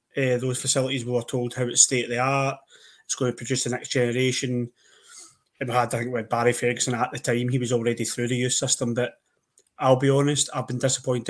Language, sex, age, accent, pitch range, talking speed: English, male, 30-49, British, 125-135 Hz, 235 wpm